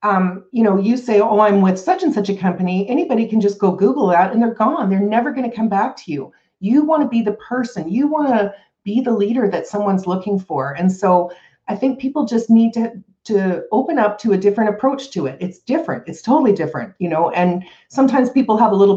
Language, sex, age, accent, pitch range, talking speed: English, female, 40-59, American, 180-230 Hz, 240 wpm